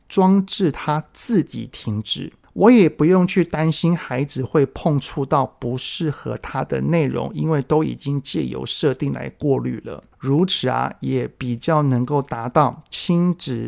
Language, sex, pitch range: Chinese, male, 130-165 Hz